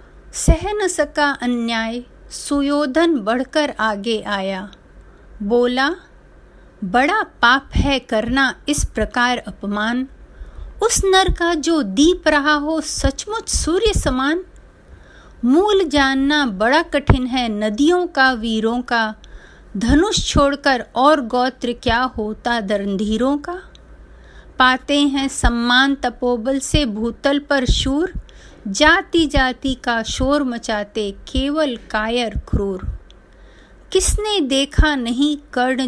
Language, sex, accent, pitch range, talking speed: Hindi, female, native, 235-310 Hz, 105 wpm